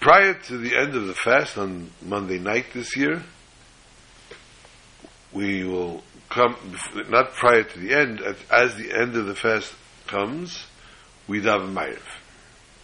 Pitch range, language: 95-115 Hz, English